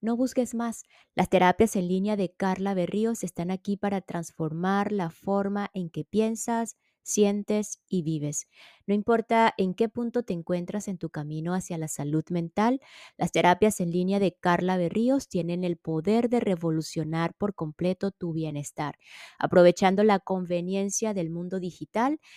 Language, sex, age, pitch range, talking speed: Spanish, female, 20-39, 170-200 Hz, 155 wpm